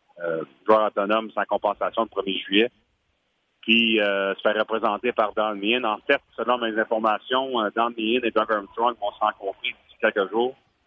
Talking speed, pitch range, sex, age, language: 170 wpm, 105-125 Hz, male, 40-59, French